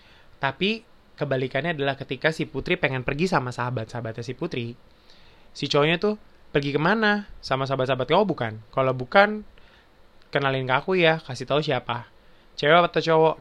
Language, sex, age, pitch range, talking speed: Indonesian, male, 20-39, 120-155 Hz, 150 wpm